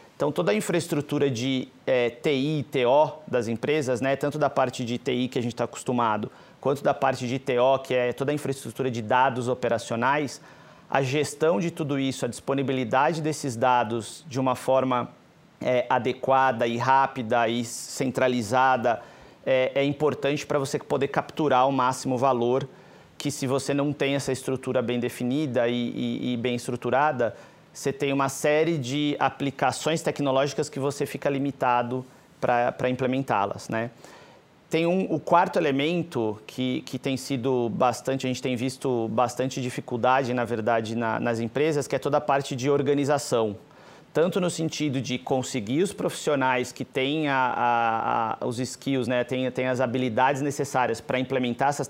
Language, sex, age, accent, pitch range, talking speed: English, male, 40-59, Brazilian, 125-145 Hz, 160 wpm